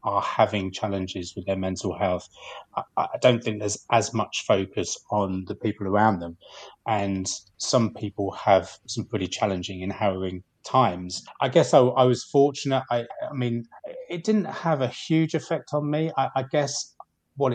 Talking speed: 175 wpm